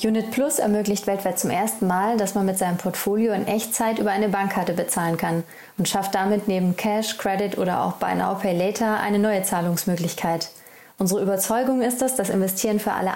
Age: 30-49